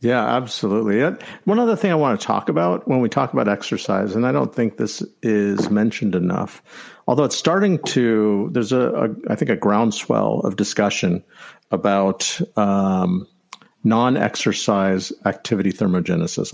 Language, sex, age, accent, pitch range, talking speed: English, male, 50-69, American, 100-140 Hz, 150 wpm